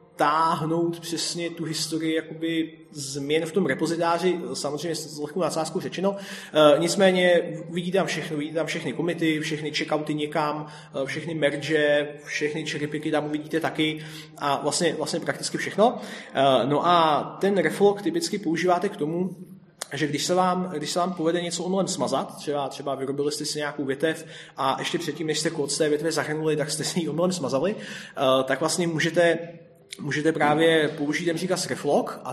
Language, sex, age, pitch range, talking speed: Czech, male, 20-39, 145-160 Hz, 160 wpm